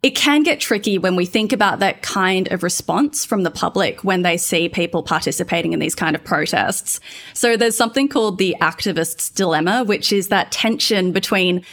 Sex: female